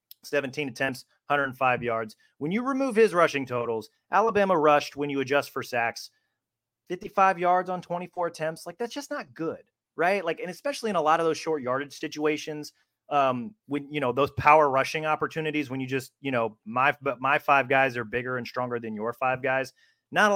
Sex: male